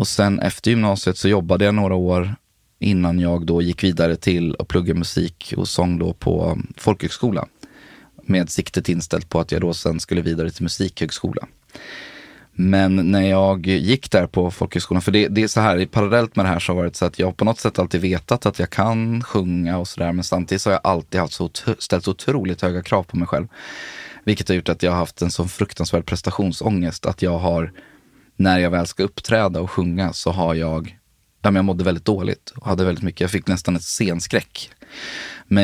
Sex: male